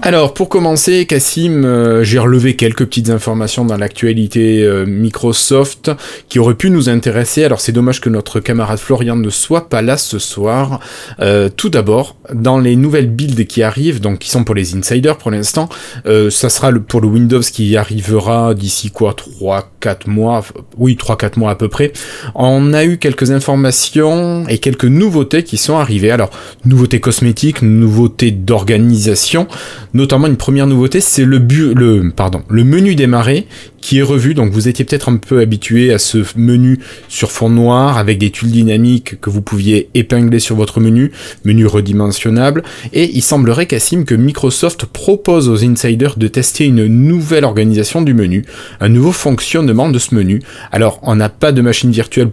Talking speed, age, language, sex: 180 wpm, 20-39, French, male